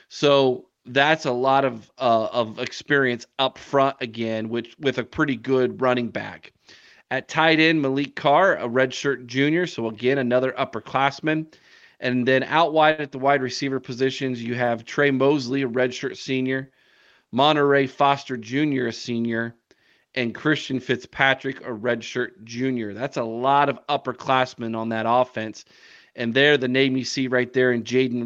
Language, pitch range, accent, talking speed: English, 115-135 Hz, American, 160 wpm